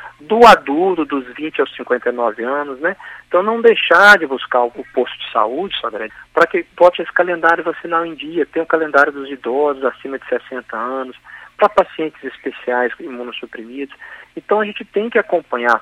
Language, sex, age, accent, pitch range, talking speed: Portuguese, male, 40-59, Brazilian, 135-180 Hz, 170 wpm